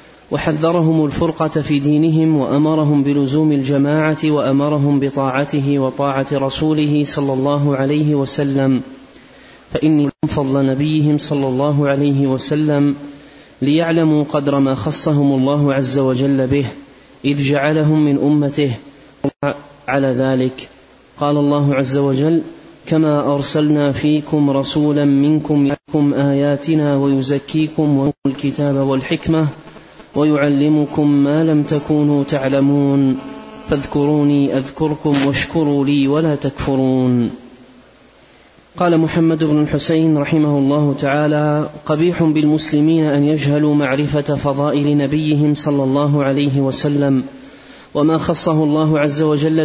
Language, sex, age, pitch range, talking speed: Arabic, male, 30-49, 140-150 Hz, 105 wpm